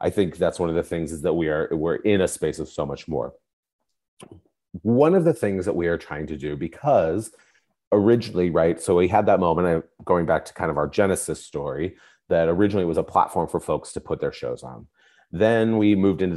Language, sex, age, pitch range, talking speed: English, male, 30-49, 80-115 Hz, 225 wpm